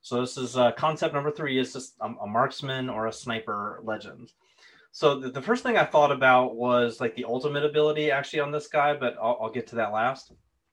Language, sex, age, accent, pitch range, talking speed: English, male, 30-49, American, 115-145 Hz, 225 wpm